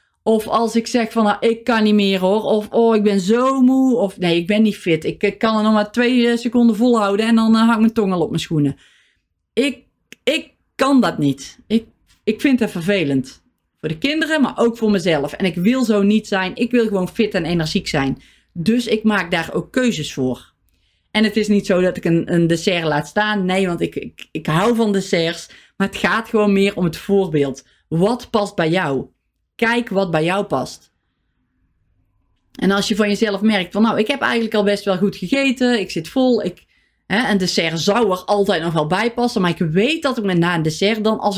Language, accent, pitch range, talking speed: Dutch, Dutch, 180-230 Hz, 230 wpm